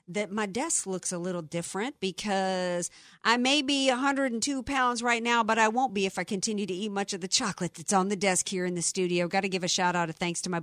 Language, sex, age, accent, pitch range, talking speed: English, female, 50-69, American, 170-220 Hz, 260 wpm